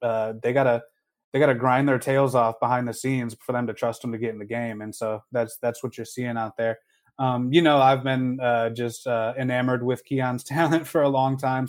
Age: 20-39